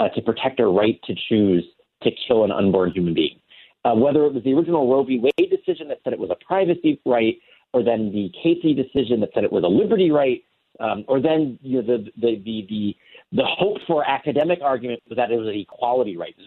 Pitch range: 110-155 Hz